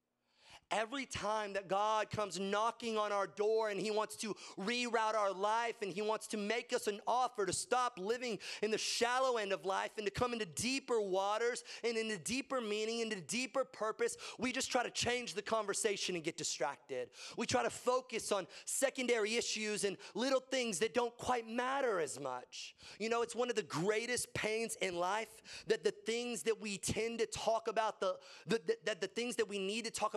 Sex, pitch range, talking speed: male, 200-240 Hz, 205 wpm